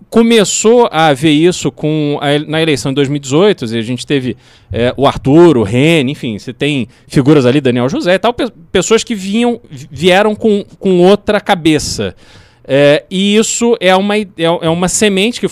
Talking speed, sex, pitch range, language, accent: 180 wpm, male, 130-175 Hz, Portuguese, Brazilian